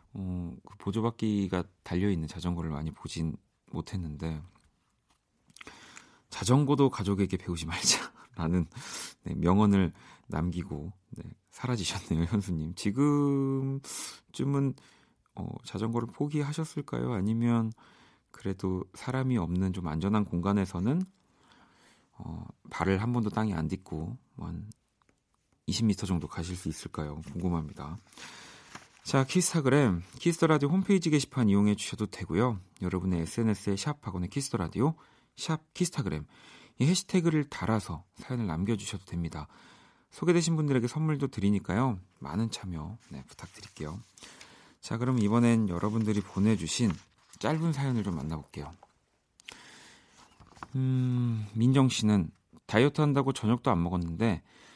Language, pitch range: Korean, 90-130 Hz